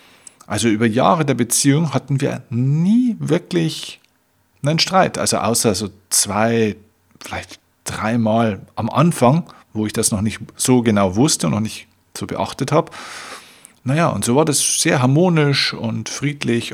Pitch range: 105-140 Hz